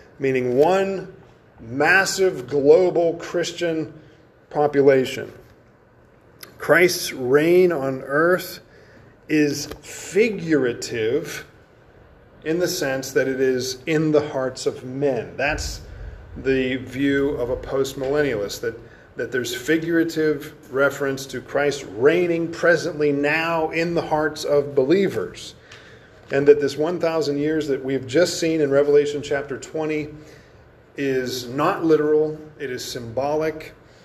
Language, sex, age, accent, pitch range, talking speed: English, male, 40-59, American, 130-160 Hz, 115 wpm